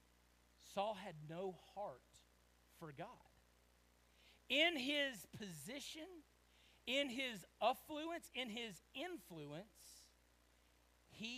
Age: 40-59